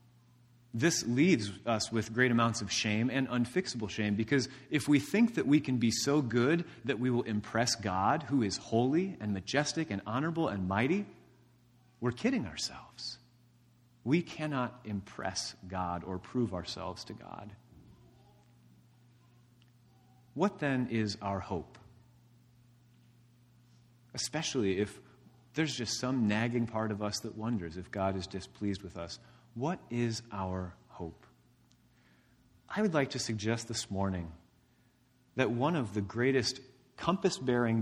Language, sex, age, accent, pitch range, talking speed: English, male, 30-49, American, 105-145 Hz, 135 wpm